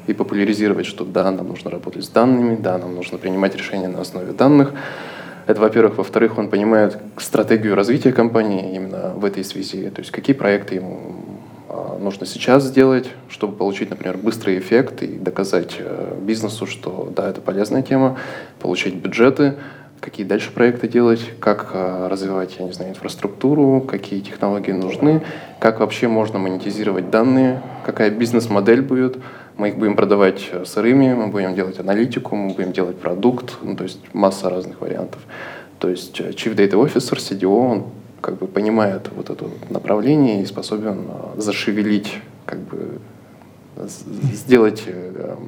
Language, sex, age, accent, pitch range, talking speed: Russian, male, 20-39, native, 95-115 Hz, 140 wpm